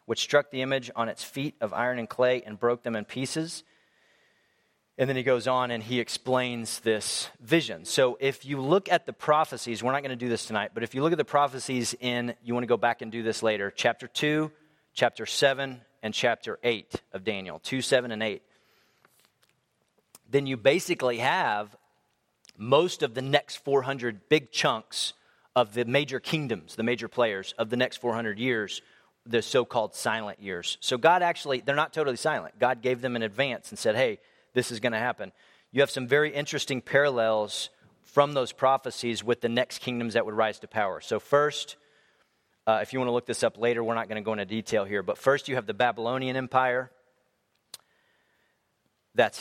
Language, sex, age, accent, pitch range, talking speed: English, male, 30-49, American, 115-135 Hz, 190 wpm